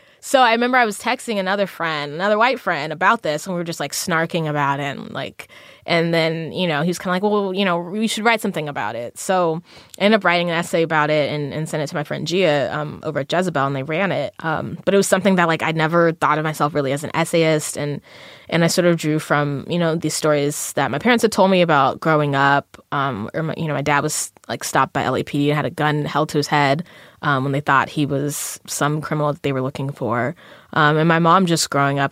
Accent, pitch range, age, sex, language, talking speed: American, 145-170 Hz, 20-39, female, English, 265 wpm